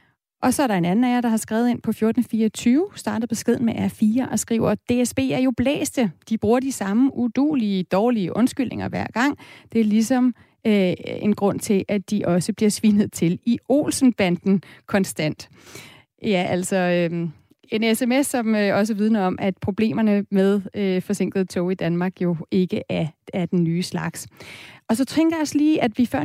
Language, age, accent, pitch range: Danish, 30-49, native, 195-240 Hz